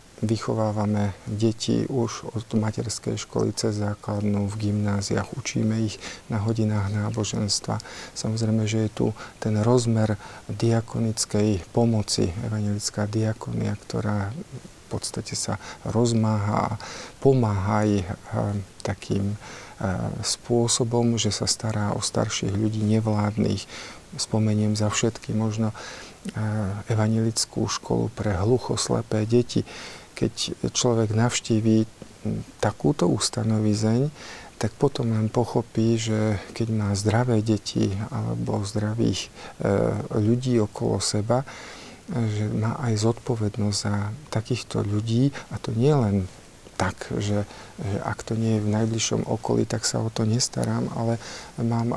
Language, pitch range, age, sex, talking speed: Slovak, 105-115 Hz, 50-69, male, 115 wpm